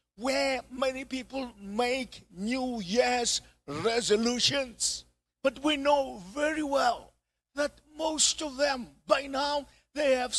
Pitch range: 215-275 Hz